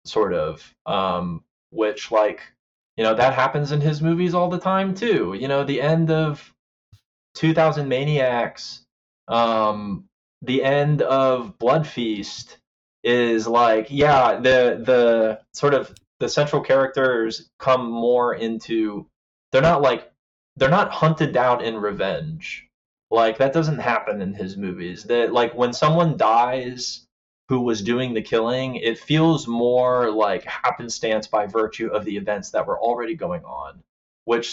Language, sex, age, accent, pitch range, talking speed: English, male, 20-39, American, 115-140 Hz, 145 wpm